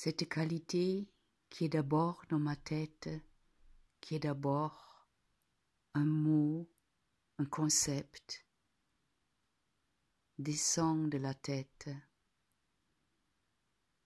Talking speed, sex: 80 wpm, female